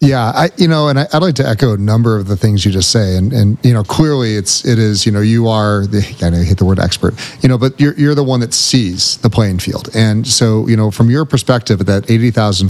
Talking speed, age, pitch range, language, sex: 280 wpm, 40-59, 105-125 Hz, English, male